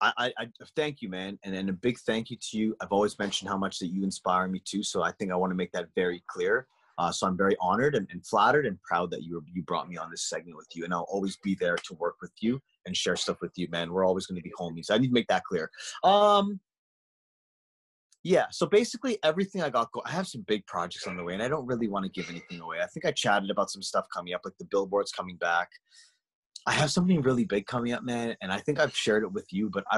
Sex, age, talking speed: male, 30-49, 275 wpm